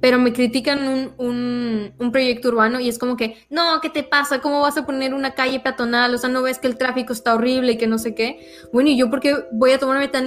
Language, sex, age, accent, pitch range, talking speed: Spanish, female, 10-29, Mexican, 225-260 Hz, 270 wpm